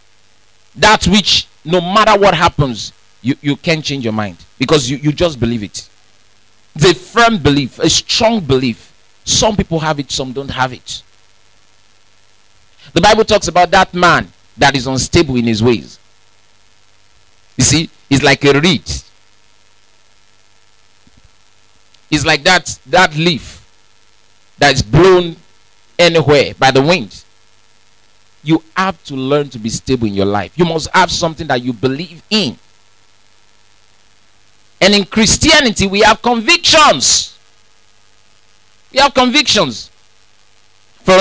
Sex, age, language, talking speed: male, 50-69, English, 130 wpm